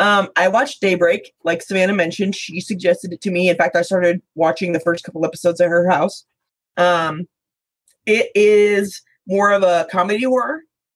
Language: English